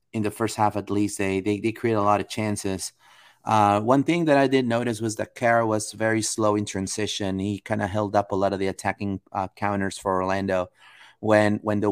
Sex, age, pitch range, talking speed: male, 30-49, 105-120 Hz, 225 wpm